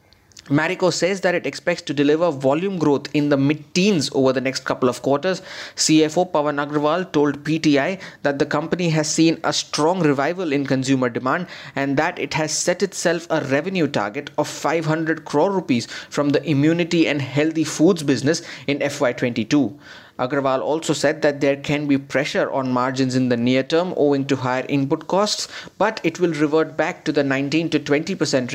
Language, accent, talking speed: English, Indian, 180 wpm